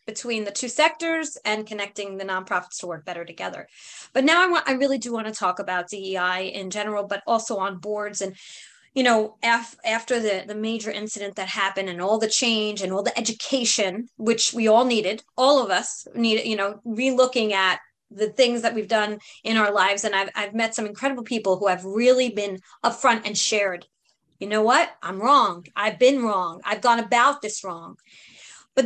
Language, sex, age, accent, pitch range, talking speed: English, female, 30-49, American, 205-255 Hz, 205 wpm